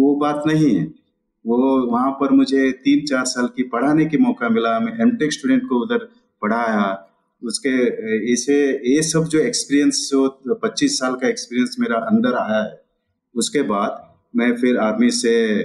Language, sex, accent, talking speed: Hindi, male, native, 165 wpm